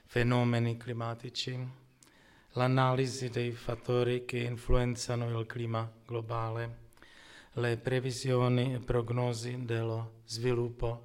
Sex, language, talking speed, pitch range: male, Italian, 85 wpm, 115-130 Hz